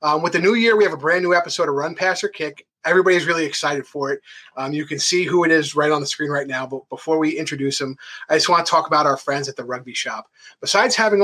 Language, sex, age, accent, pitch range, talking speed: English, male, 30-49, American, 140-180 Hz, 285 wpm